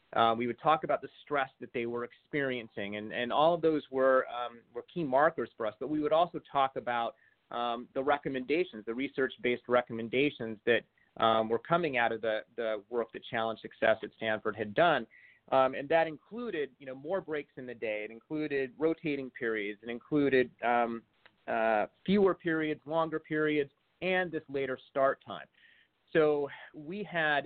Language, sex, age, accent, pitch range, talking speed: English, male, 30-49, American, 120-150 Hz, 180 wpm